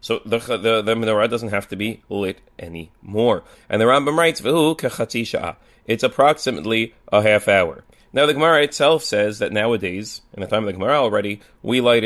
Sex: male